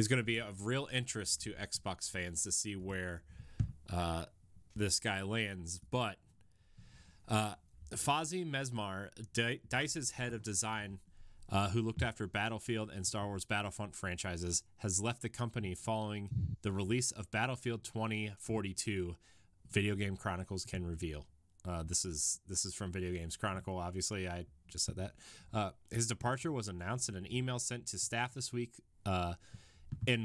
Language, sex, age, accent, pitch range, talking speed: English, male, 30-49, American, 95-115 Hz, 150 wpm